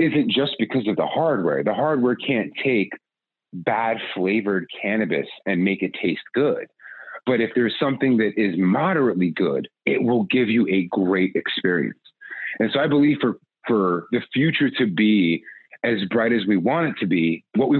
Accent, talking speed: American, 180 wpm